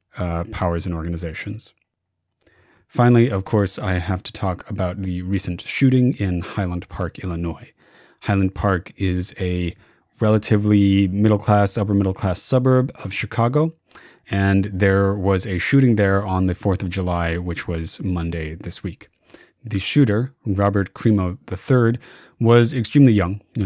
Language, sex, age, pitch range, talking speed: English, male, 30-49, 90-115 Hz, 135 wpm